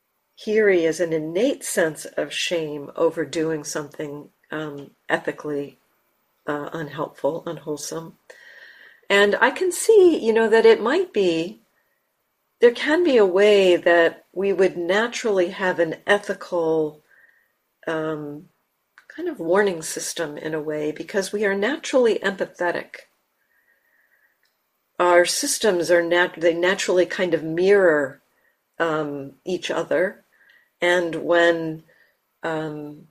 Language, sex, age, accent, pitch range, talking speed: English, female, 50-69, American, 160-220 Hz, 120 wpm